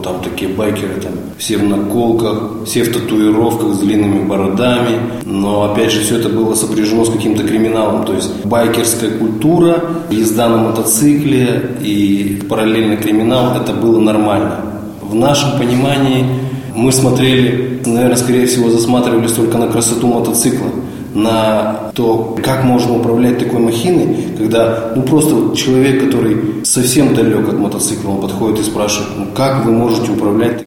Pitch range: 105-125 Hz